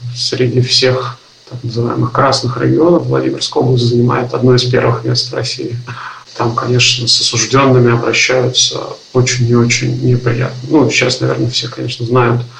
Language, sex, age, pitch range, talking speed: Russian, male, 70-89, 120-130 Hz, 145 wpm